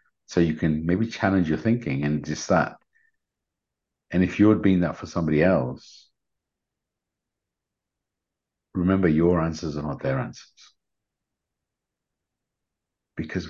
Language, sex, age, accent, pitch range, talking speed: English, male, 50-69, British, 75-95 Hz, 115 wpm